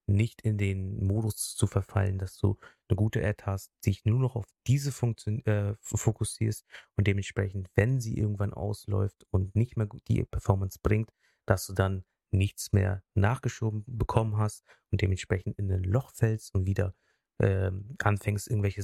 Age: 30-49